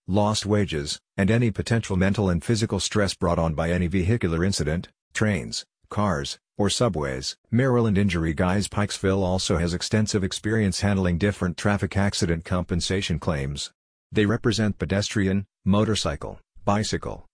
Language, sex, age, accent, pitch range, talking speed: English, male, 50-69, American, 90-105 Hz, 130 wpm